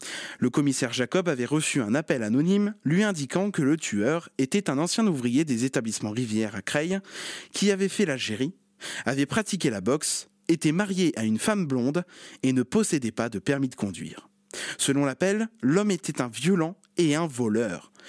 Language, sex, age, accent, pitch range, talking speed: French, male, 20-39, French, 125-200 Hz, 175 wpm